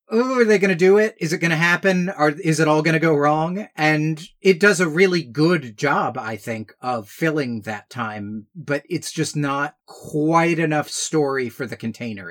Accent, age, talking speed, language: American, 30-49, 205 wpm, English